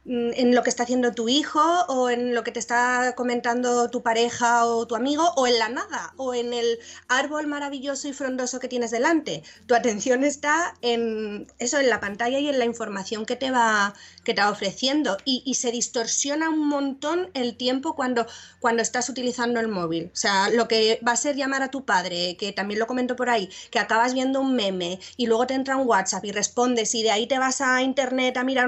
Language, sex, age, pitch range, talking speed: Spanish, female, 30-49, 235-285 Hz, 220 wpm